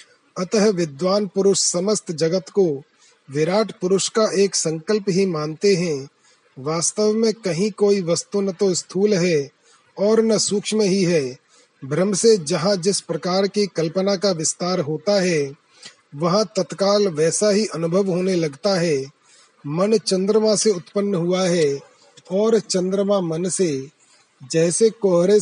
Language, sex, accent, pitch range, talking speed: Hindi, male, native, 170-205 Hz, 135 wpm